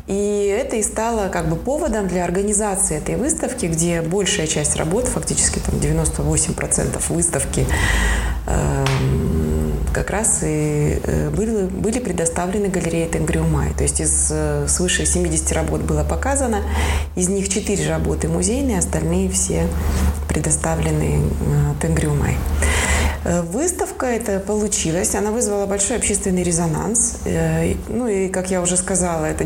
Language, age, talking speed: Russian, 20-39, 120 wpm